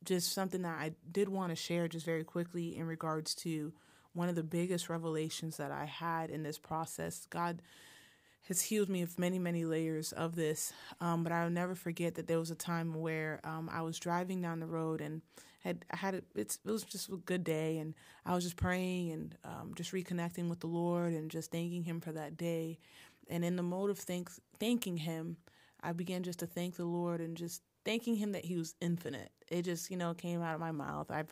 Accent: American